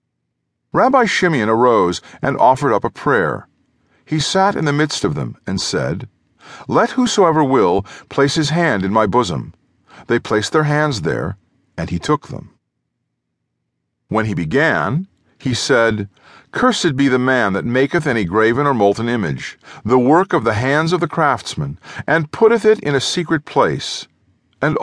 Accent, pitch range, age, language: American, 110-155 Hz, 50-69, English